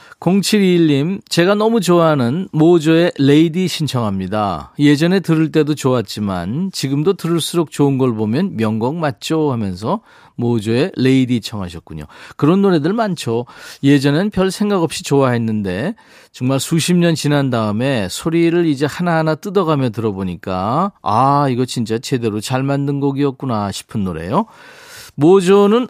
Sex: male